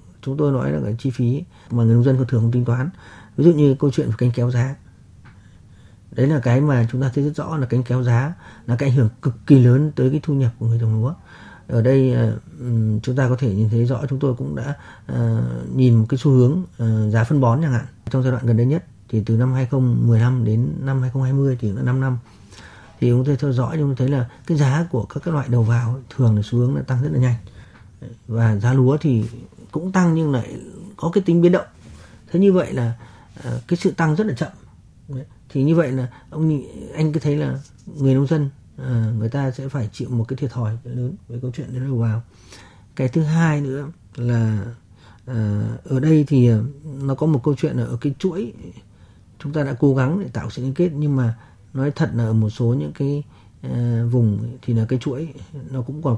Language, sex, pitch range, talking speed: Vietnamese, male, 115-140 Hz, 230 wpm